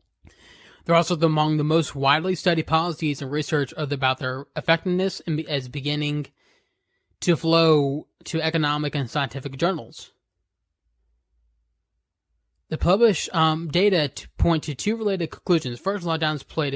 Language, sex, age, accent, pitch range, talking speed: English, male, 20-39, American, 135-170 Hz, 145 wpm